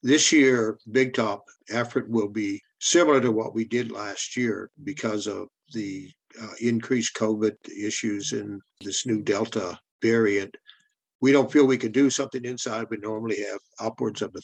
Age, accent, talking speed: 60-79, American, 165 wpm